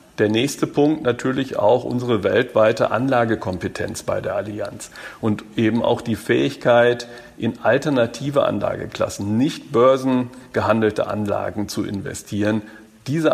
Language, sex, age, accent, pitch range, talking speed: German, male, 50-69, German, 110-135 Hz, 115 wpm